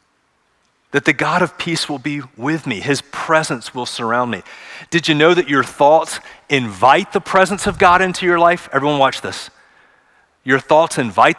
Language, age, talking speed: English, 30-49, 180 wpm